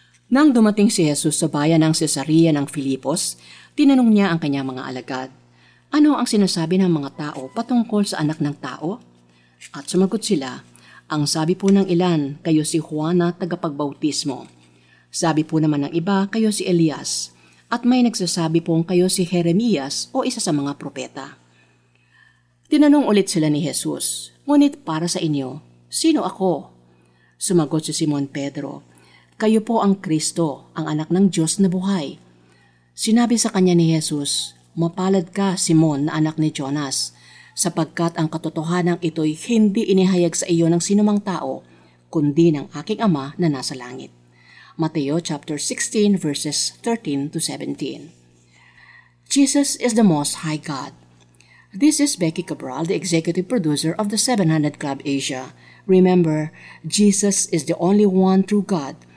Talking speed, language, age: 150 wpm, Filipino, 50-69